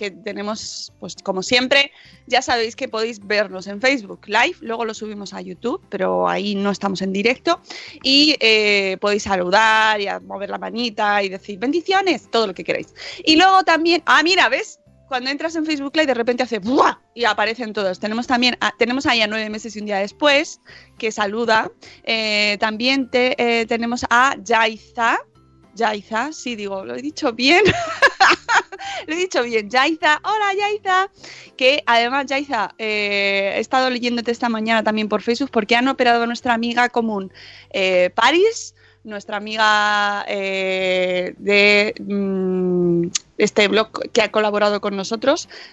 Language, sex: Spanish, female